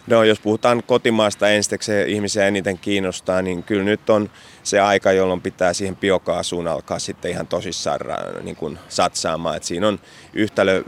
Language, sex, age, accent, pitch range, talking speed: Finnish, male, 30-49, native, 85-100 Hz, 160 wpm